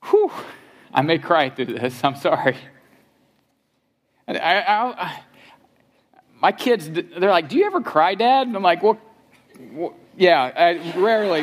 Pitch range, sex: 130-175 Hz, male